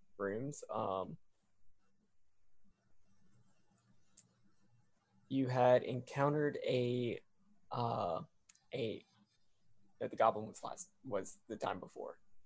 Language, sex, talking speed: English, male, 80 wpm